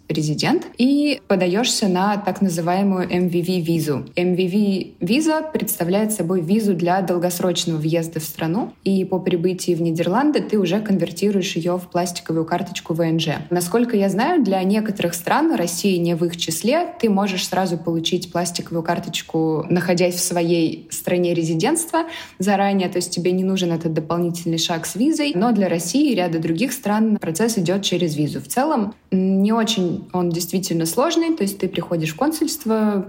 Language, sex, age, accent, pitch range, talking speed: Russian, female, 20-39, native, 170-210 Hz, 160 wpm